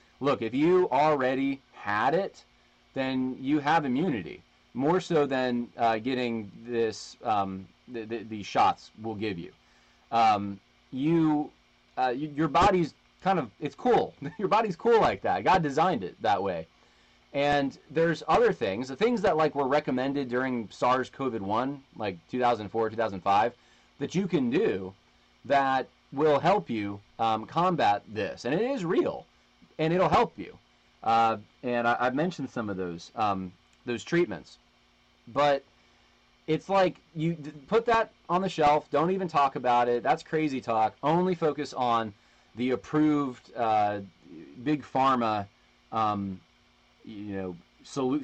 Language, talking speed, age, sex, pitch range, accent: English, 145 wpm, 30-49, male, 115-155 Hz, American